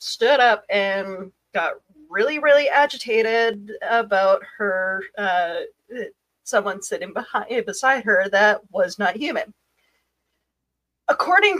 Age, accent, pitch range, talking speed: 30-49, American, 200-275 Hz, 105 wpm